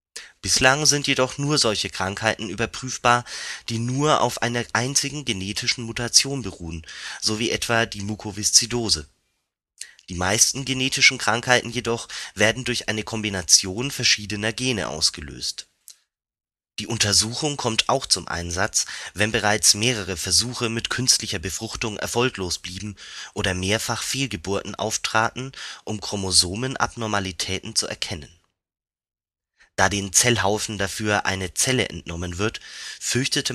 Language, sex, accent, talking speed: German, male, German, 115 wpm